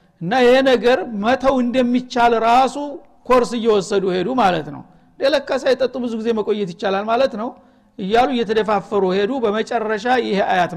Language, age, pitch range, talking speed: Amharic, 60-79, 200-245 Hz, 140 wpm